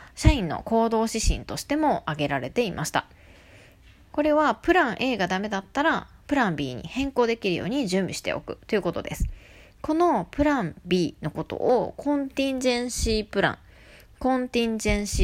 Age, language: 20-39, Japanese